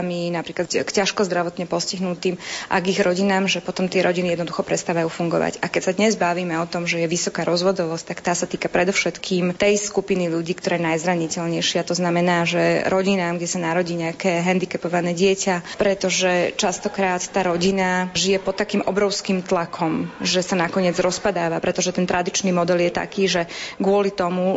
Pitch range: 180-195 Hz